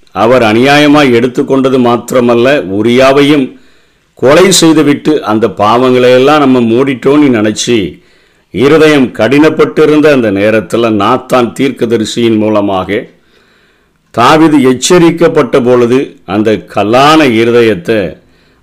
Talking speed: 90 wpm